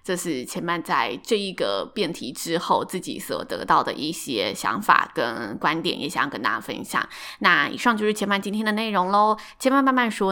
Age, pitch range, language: 20-39, 175-215 Hz, Chinese